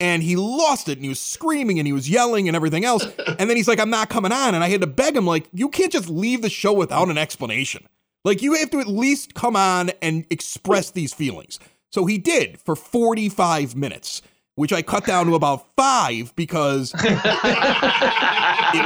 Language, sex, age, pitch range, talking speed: English, male, 30-49, 165-220 Hz, 210 wpm